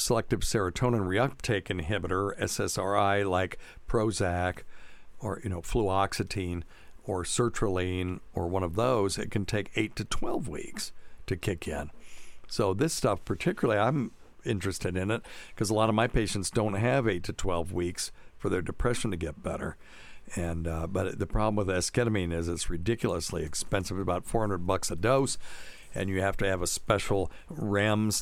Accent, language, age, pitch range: American, English, 60-79, 90-110 Hz